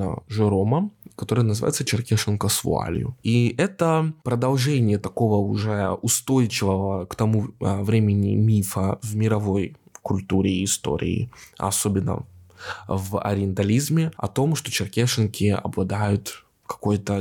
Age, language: 20-39, Russian